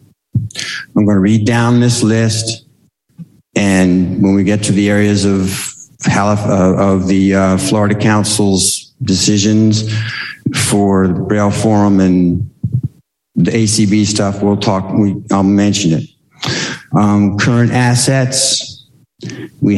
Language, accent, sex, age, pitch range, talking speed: English, American, male, 50-69, 105-130 Hz, 125 wpm